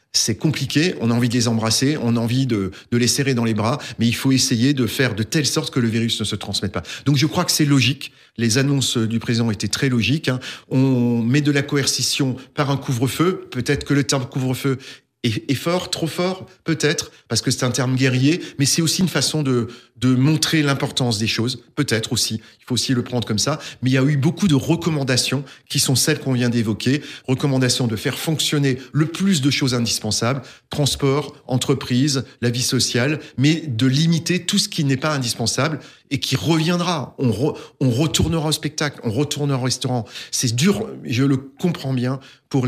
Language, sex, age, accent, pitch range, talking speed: French, male, 40-59, French, 120-145 Hz, 210 wpm